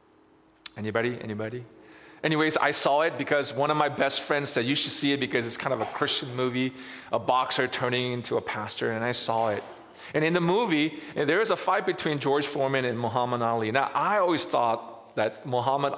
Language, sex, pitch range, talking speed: English, male, 125-185 Hz, 205 wpm